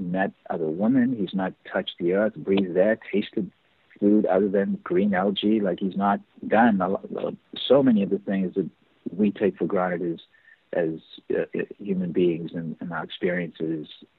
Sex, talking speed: male, 180 wpm